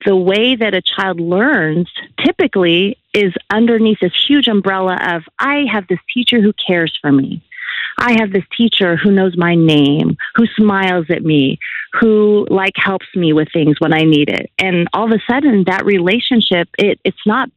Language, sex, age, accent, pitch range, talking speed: English, female, 30-49, American, 165-220 Hz, 180 wpm